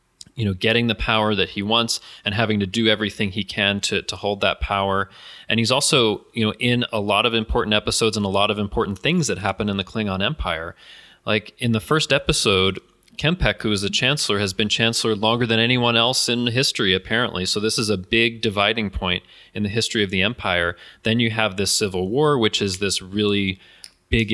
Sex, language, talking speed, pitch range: male, English, 215 wpm, 100-115 Hz